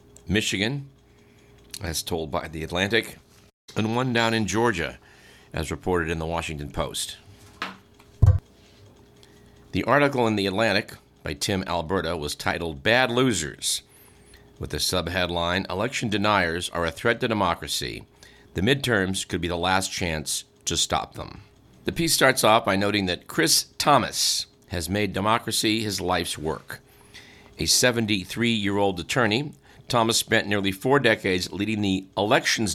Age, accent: 50-69, American